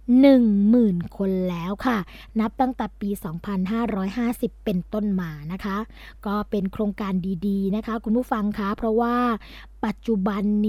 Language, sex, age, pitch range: Thai, female, 20-39, 195-245 Hz